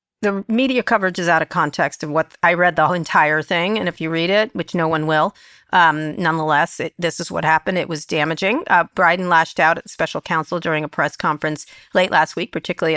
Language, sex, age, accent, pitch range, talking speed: English, female, 40-59, American, 155-185 Hz, 230 wpm